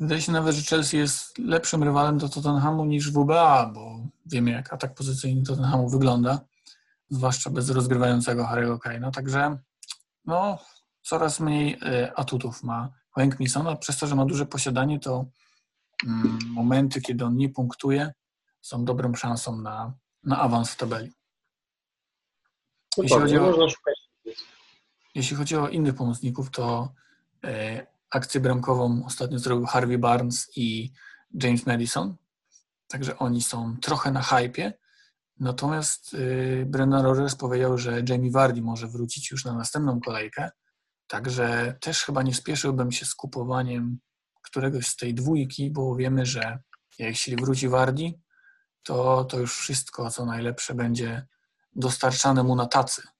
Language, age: Polish, 40-59